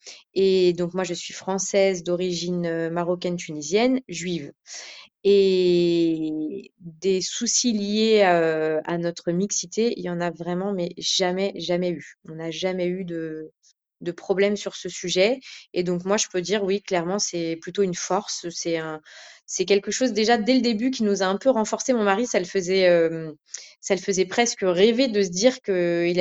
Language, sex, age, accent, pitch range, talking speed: French, female, 20-39, French, 170-200 Hz, 175 wpm